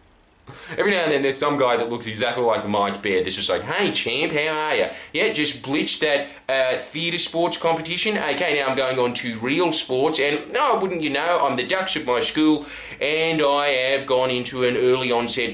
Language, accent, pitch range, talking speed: English, Australian, 100-145 Hz, 215 wpm